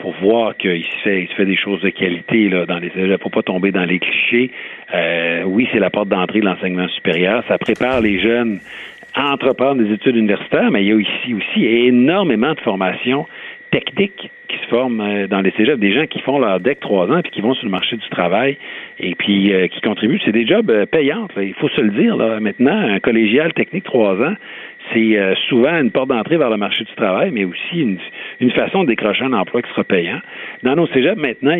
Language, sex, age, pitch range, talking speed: French, male, 50-69, 100-125 Hz, 225 wpm